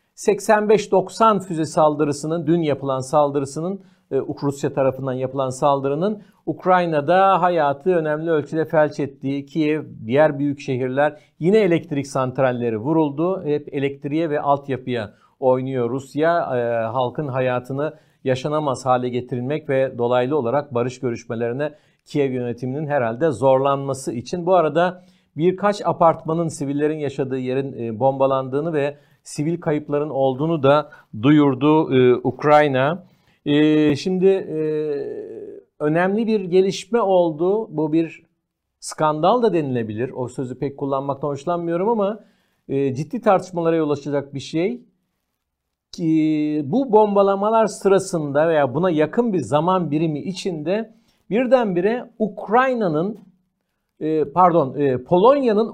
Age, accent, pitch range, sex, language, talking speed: 50-69, native, 140-185 Hz, male, Turkish, 110 wpm